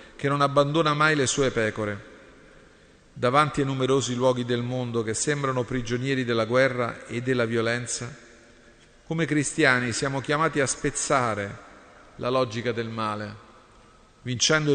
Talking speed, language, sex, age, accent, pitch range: 130 wpm, Italian, male, 40-59, native, 110-140 Hz